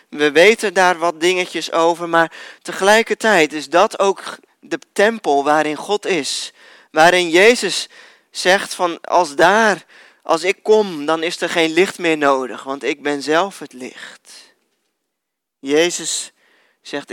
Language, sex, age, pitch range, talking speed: Dutch, male, 20-39, 150-185 Hz, 140 wpm